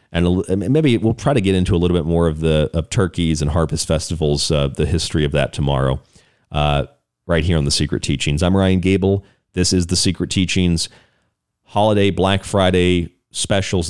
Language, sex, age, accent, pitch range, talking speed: English, male, 40-59, American, 80-95 Hz, 185 wpm